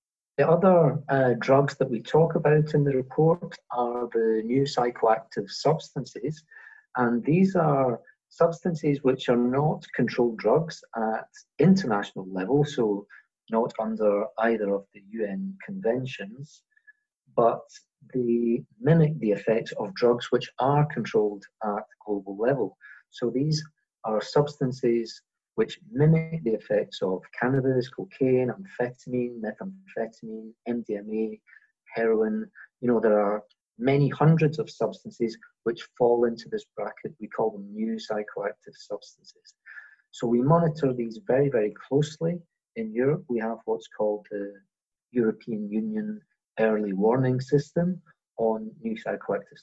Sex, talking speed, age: male, 125 wpm, 40-59